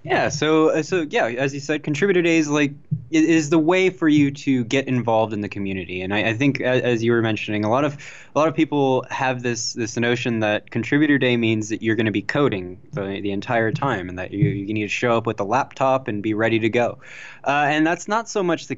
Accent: American